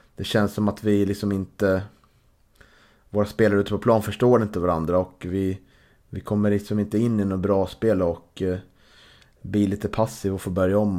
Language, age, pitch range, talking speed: Swedish, 30-49, 95-115 Hz, 190 wpm